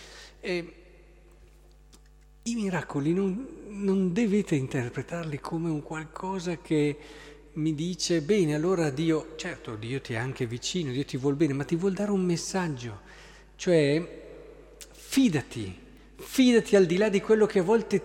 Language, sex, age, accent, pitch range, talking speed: Italian, male, 50-69, native, 150-205 Hz, 145 wpm